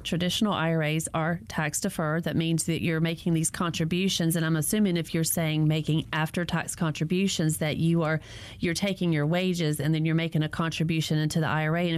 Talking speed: 180 wpm